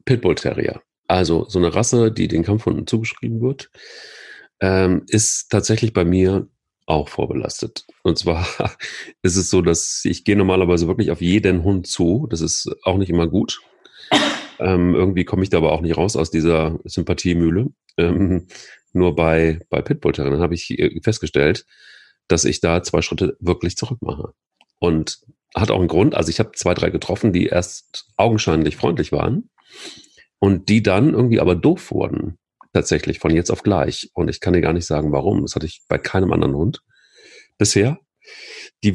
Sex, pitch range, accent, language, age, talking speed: male, 85-110 Hz, German, German, 40-59, 175 wpm